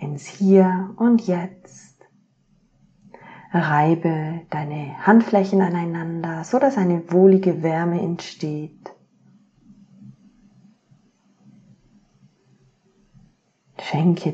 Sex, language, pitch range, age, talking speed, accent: female, German, 165-195 Hz, 30-49, 65 wpm, German